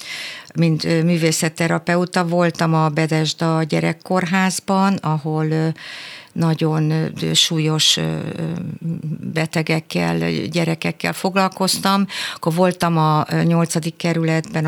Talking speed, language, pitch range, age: 70 wpm, Hungarian, 150-175 Hz, 60-79